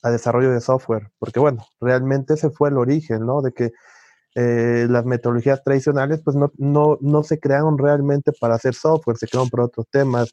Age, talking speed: 30-49, 190 wpm